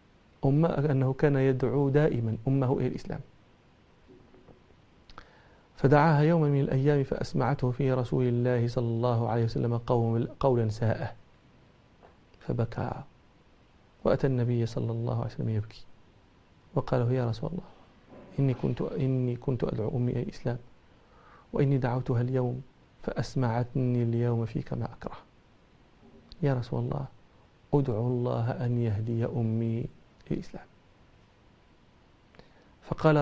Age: 40-59